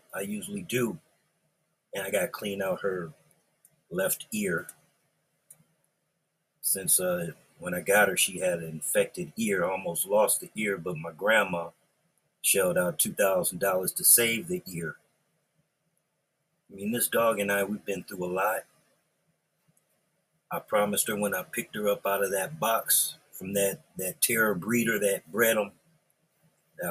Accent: American